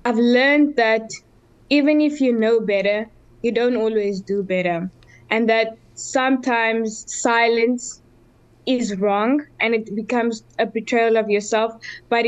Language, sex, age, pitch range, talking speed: English, female, 20-39, 220-255 Hz, 130 wpm